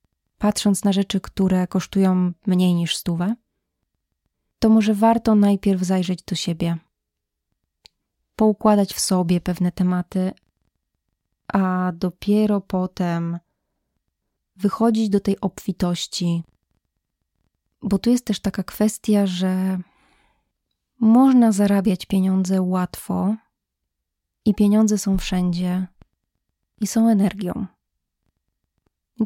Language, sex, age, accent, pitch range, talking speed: Polish, female, 20-39, native, 180-215 Hz, 95 wpm